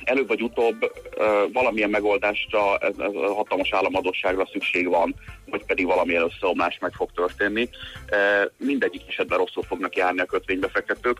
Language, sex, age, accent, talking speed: English, male, 30-49, Finnish, 150 wpm